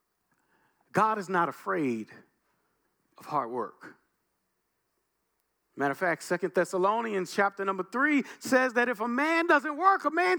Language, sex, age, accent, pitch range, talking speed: English, male, 50-69, American, 185-270 Hz, 140 wpm